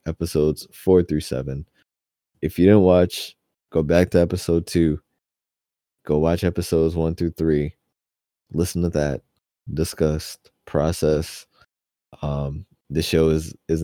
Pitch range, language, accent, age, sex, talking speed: 70-80 Hz, English, American, 20-39, male, 125 wpm